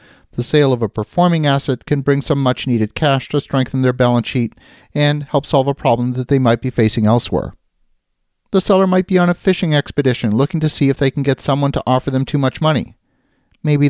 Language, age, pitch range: English, 40-59, 120-150 Hz